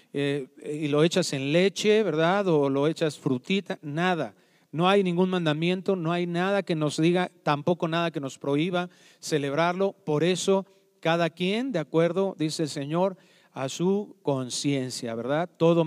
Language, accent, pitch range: Spanish, Mexican, 150-195 Hz